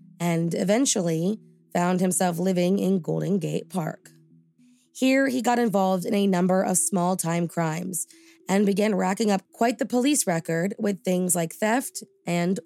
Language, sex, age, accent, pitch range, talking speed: English, female, 20-39, American, 170-215 Hz, 150 wpm